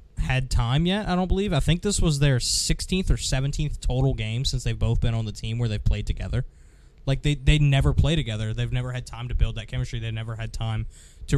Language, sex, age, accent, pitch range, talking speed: English, male, 20-39, American, 115-135 Hz, 245 wpm